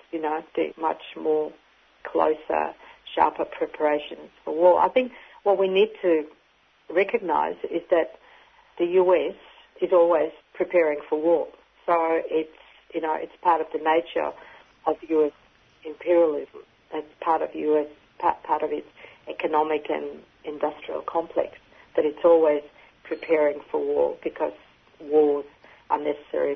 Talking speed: 130 wpm